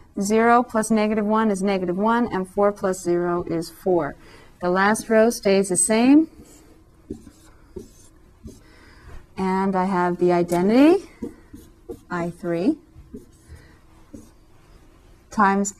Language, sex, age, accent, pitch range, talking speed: English, female, 30-49, American, 175-220 Hz, 100 wpm